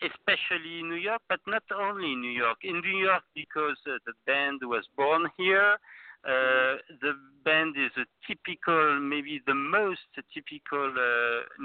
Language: English